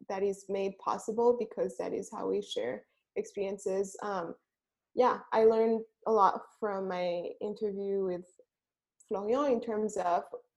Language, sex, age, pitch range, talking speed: English, female, 20-39, 205-255 Hz, 140 wpm